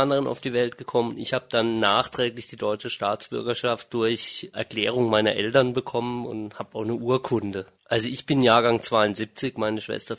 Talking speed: 170 wpm